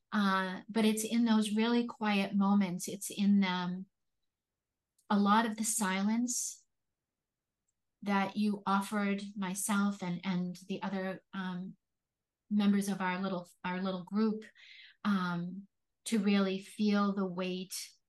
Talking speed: 120 wpm